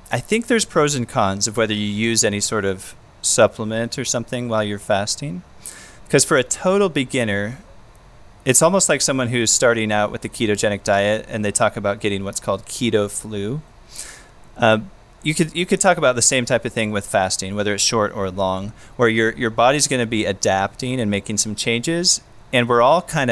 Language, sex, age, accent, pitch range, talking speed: English, male, 30-49, American, 105-130 Hz, 205 wpm